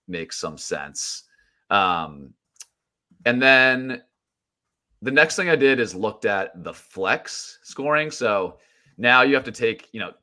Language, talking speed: English, 145 wpm